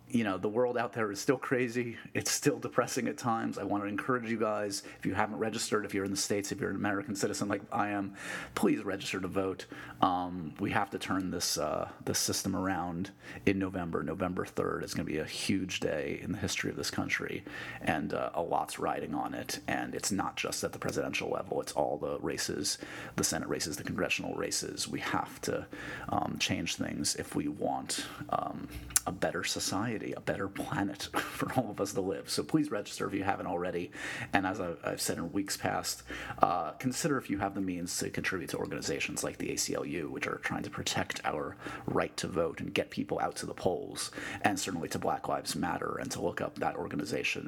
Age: 30-49